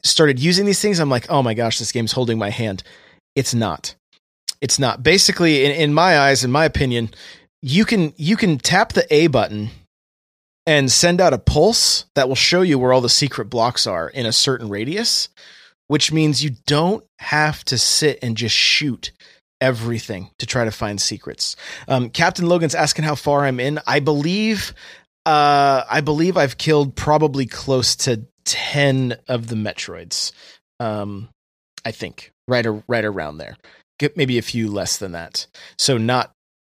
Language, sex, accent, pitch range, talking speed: English, male, American, 115-155 Hz, 175 wpm